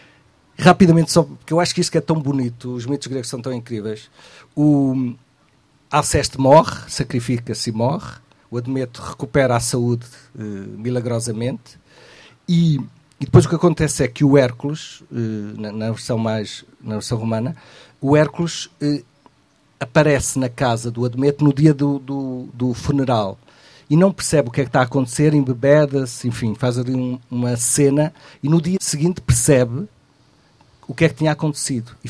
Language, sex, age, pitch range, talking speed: Portuguese, male, 50-69, 125-150 Hz, 170 wpm